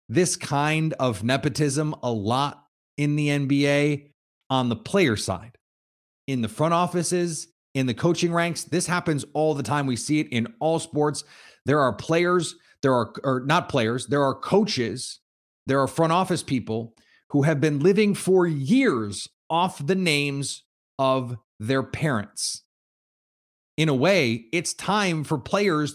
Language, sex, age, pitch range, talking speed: English, male, 30-49, 125-180 Hz, 155 wpm